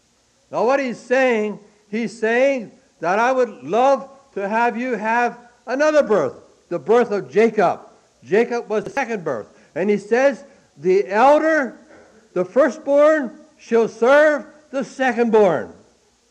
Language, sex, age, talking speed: English, male, 60-79, 135 wpm